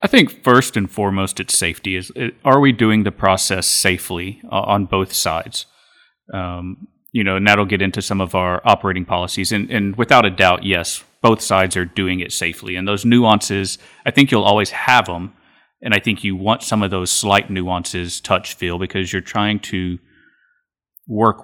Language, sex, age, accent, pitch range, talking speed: English, male, 30-49, American, 90-105 Hz, 190 wpm